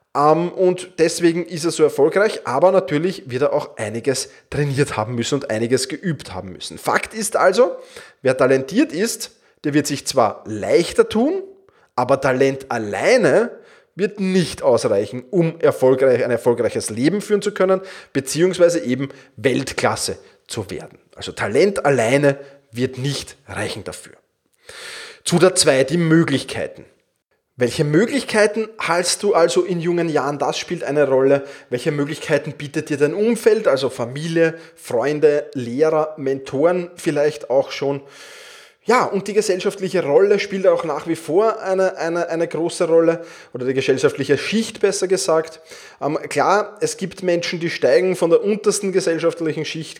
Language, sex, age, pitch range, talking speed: German, male, 20-39, 140-190 Hz, 145 wpm